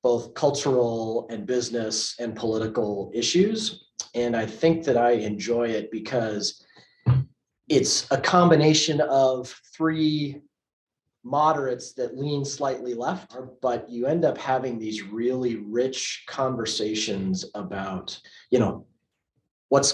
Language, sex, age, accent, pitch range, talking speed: English, male, 30-49, American, 110-130 Hz, 115 wpm